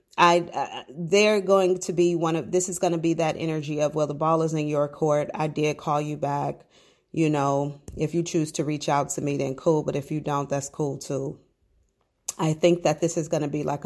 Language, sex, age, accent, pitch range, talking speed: English, female, 30-49, American, 145-165 Hz, 240 wpm